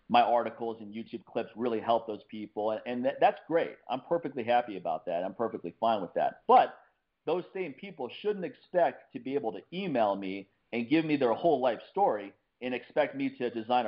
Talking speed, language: 210 wpm, English